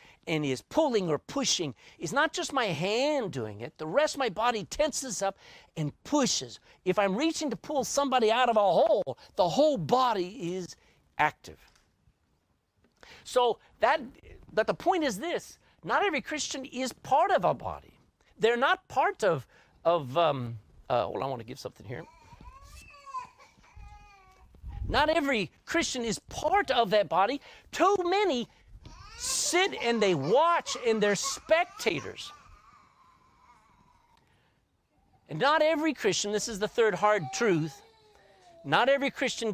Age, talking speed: 50-69, 145 wpm